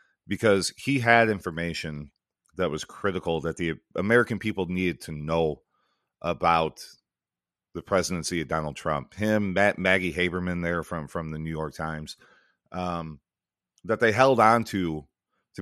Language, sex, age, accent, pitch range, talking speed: English, male, 30-49, American, 80-100 Hz, 140 wpm